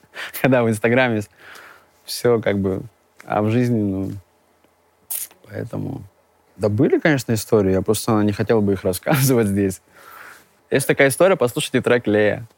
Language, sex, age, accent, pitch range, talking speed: Russian, male, 20-39, native, 95-125 Hz, 140 wpm